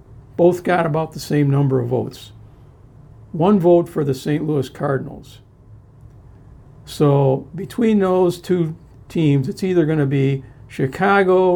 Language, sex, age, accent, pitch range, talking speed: English, male, 60-79, American, 125-160 Hz, 135 wpm